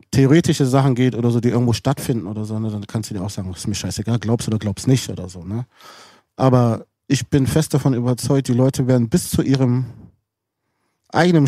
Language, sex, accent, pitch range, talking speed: German, male, German, 115-145 Hz, 215 wpm